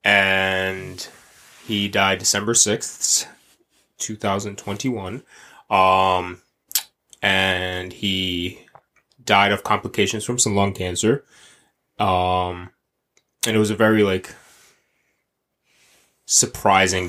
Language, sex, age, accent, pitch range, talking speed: English, male, 20-39, American, 90-105 Hz, 85 wpm